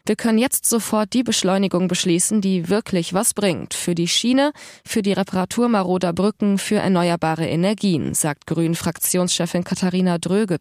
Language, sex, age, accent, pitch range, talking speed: German, female, 20-39, German, 170-215 Hz, 145 wpm